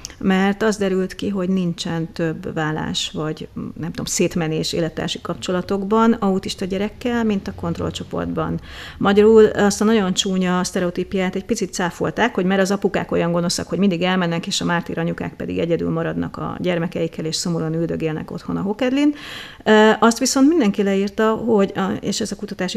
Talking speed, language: 160 wpm, Hungarian